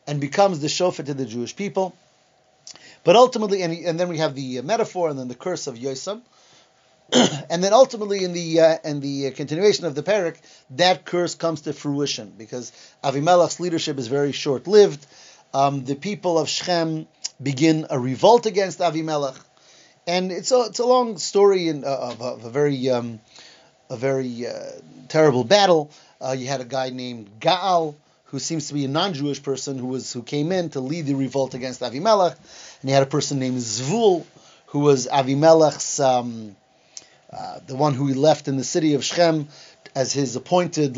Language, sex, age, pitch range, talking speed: English, male, 30-49, 135-175 Hz, 185 wpm